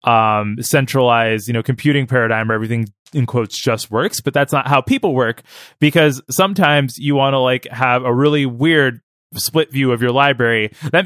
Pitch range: 115-145 Hz